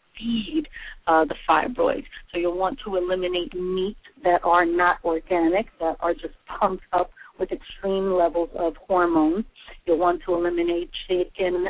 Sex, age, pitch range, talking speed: female, 40-59, 165-195 Hz, 150 wpm